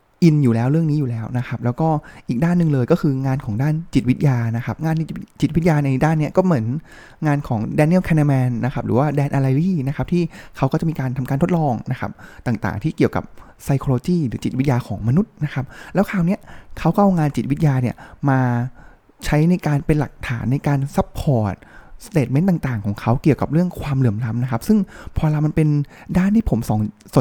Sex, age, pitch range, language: male, 20-39, 120-165 Hz, Thai